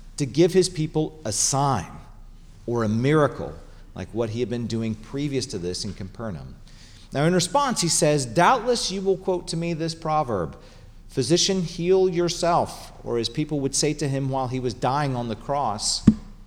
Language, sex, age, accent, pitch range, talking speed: English, male, 40-59, American, 115-165 Hz, 180 wpm